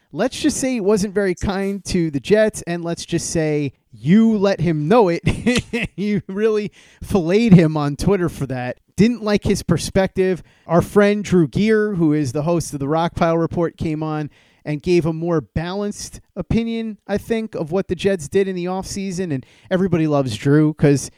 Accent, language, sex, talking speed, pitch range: American, English, male, 185 wpm, 160-205 Hz